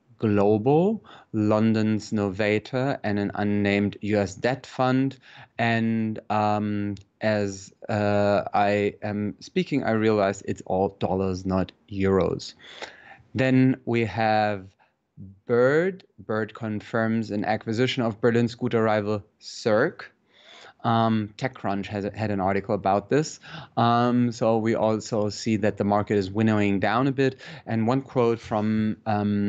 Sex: male